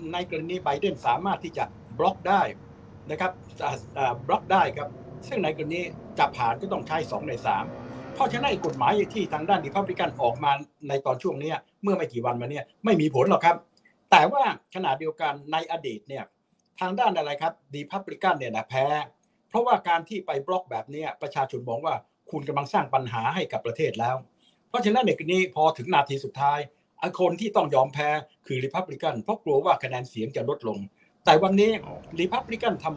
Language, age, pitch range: Thai, 60-79, 140-185 Hz